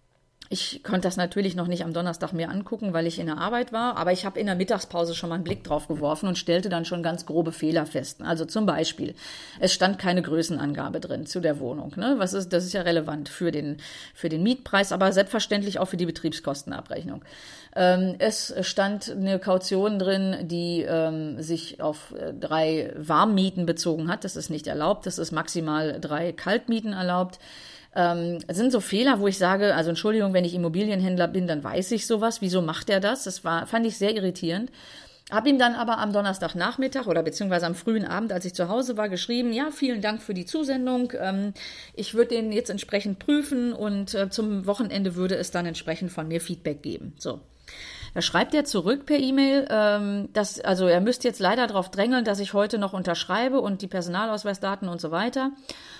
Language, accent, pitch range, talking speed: German, German, 170-215 Hz, 200 wpm